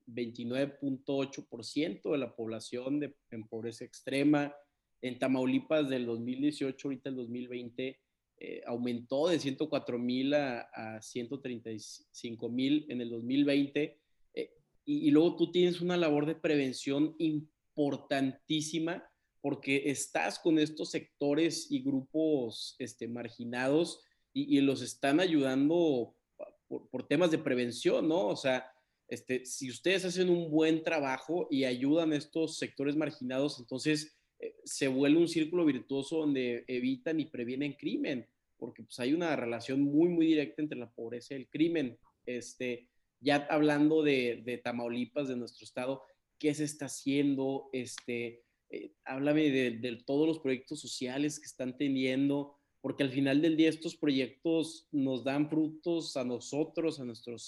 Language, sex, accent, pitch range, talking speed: Spanish, male, Mexican, 125-155 Hz, 140 wpm